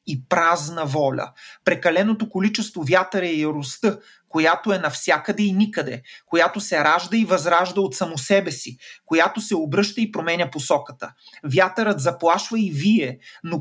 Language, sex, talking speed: Bulgarian, male, 145 wpm